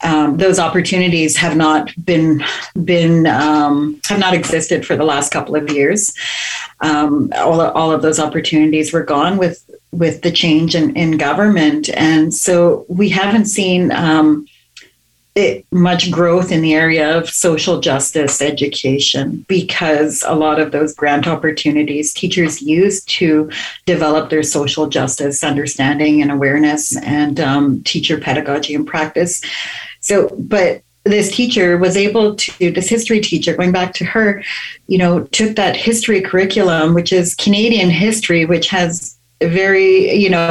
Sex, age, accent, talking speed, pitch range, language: female, 40-59, American, 150 wpm, 150-180 Hz, English